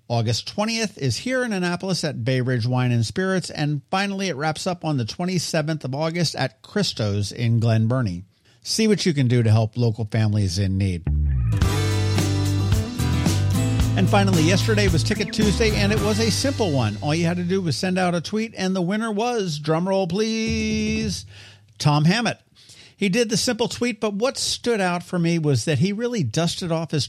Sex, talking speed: male, 190 wpm